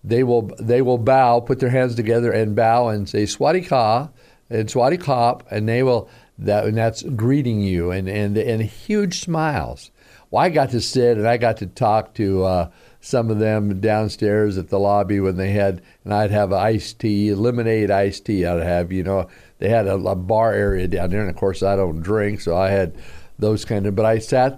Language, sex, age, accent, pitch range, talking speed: English, male, 50-69, American, 100-120 Hz, 215 wpm